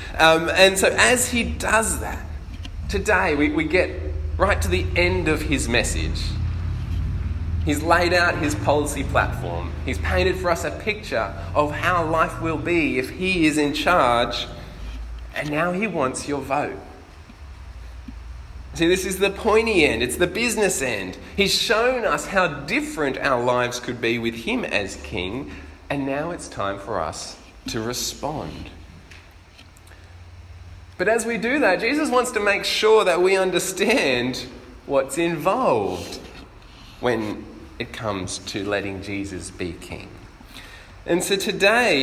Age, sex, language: 20-39, male, English